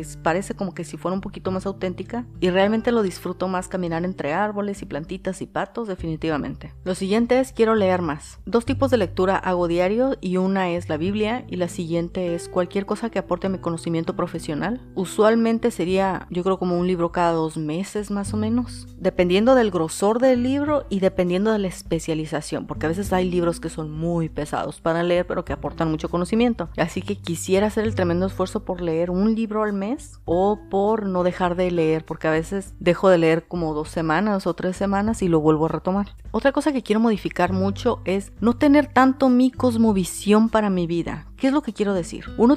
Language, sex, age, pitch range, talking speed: Spanish, female, 30-49, 170-215 Hz, 210 wpm